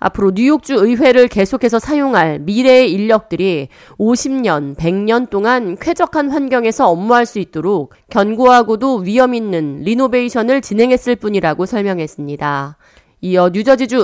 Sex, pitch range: female, 180-255 Hz